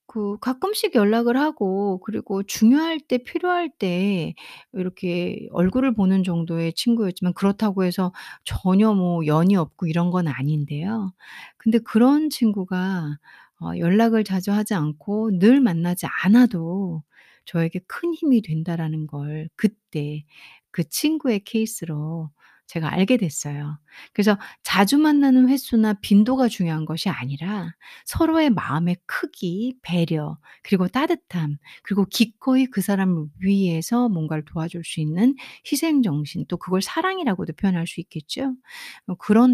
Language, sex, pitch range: Korean, female, 170-235 Hz